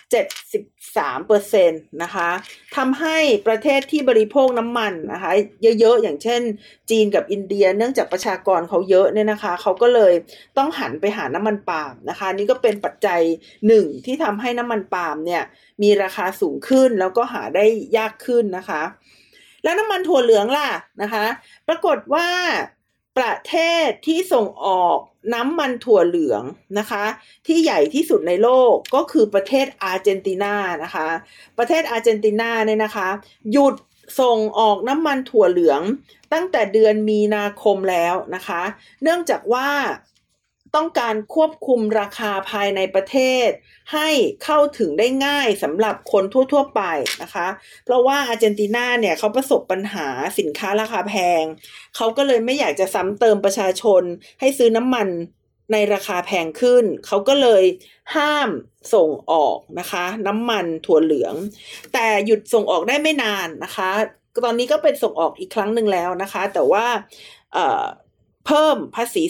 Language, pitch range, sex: Thai, 195-275 Hz, female